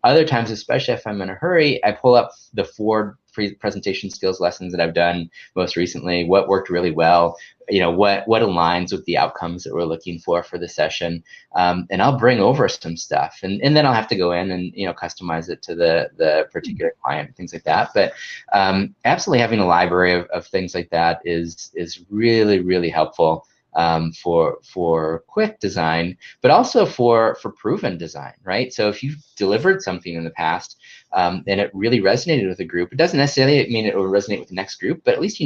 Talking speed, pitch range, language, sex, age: 215 wpm, 85-115 Hz, English, male, 20-39